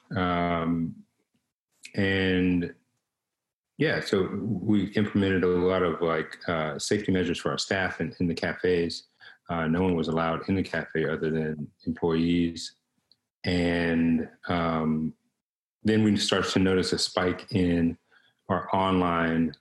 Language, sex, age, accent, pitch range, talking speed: English, male, 40-59, American, 85-95 Hz, 130 wpm